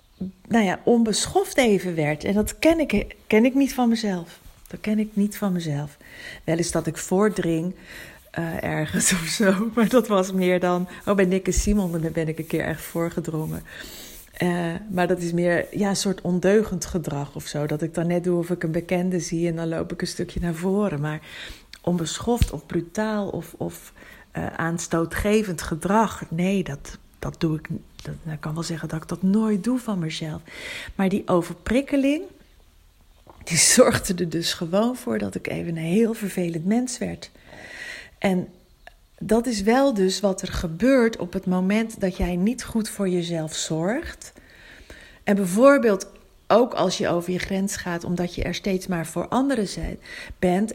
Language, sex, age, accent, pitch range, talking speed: Dutch, female, 40-59, Dutch, 170-210 Hz, 180 wpm